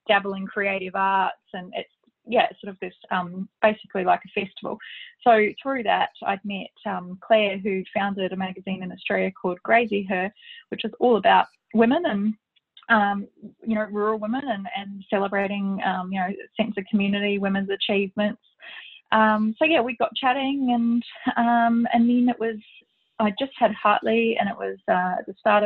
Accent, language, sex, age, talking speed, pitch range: Australian, English, female, 20-39, 180 wpm, 195-225 Hz